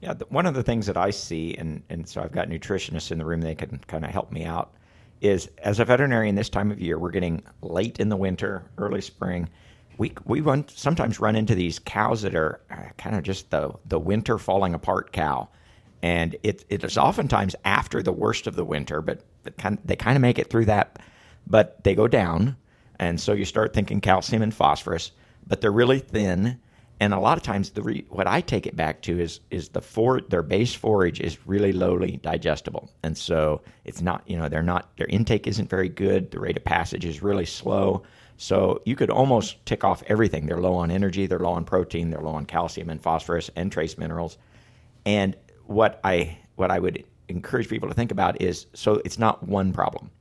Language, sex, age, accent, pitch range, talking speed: English, male, 50-69, American, 85-110 Hz, 220 wpm